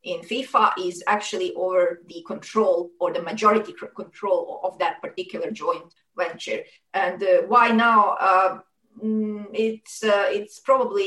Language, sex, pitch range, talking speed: Persian, female, 200-275 Hz, 135 wpm